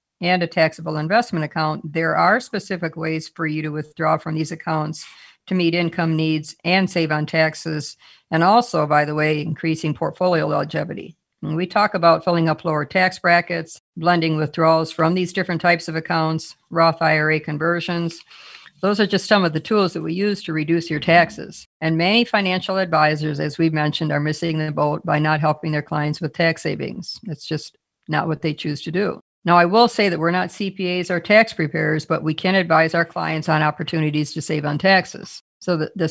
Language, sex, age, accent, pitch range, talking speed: English, female, 50-69, American, 155-180 Hz, 195 wpm